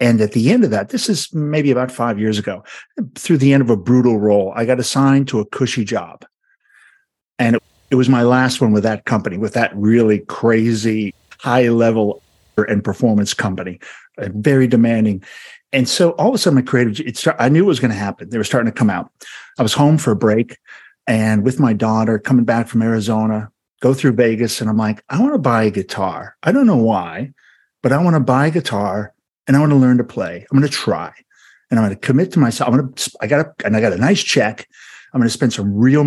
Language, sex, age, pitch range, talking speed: English, male, 50-69, 110-135 Hz, 230 wpm